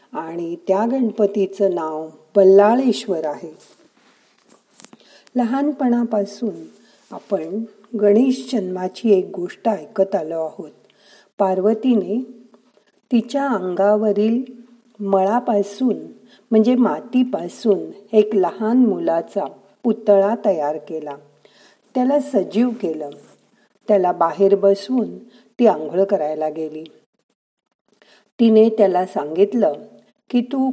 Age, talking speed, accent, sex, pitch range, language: 50-69, 80 wpm, native, female, 185-235 Hz, Marathi